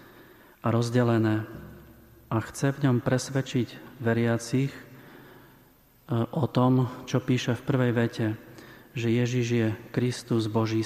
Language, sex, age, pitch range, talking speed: Slovak, male, 30-49, 115-125 Hz, 110 wpm